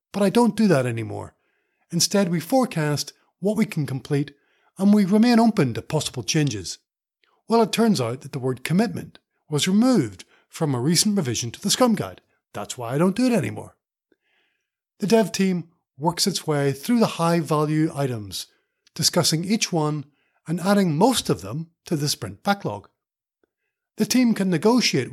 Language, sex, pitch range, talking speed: English, male, 135-200 Hz, 170 wpm